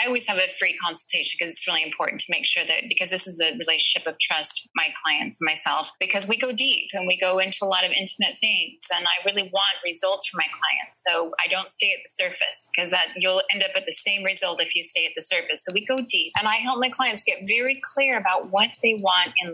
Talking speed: 260 wpm